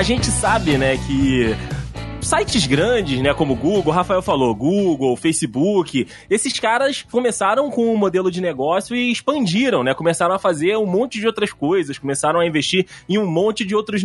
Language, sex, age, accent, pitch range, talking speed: Portuguese, male, 20-39, Brazilian, 140-220 Hz, 180 wpm